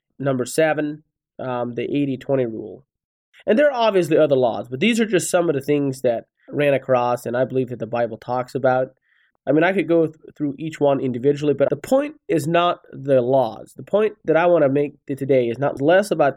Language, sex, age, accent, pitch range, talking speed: English, male, 30-49, American, 130-170 Hz, 225 wpm